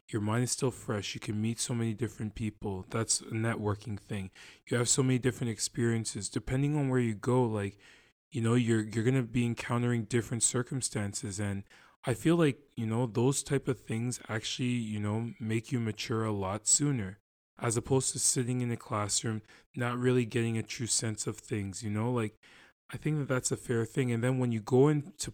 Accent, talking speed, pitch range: American, 210 wpm, 110-130 Hz